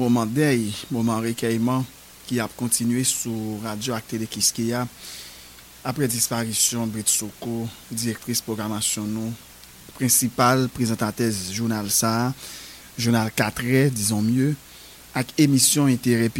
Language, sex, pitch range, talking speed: English, male, 105-130 Hz, 100 wpm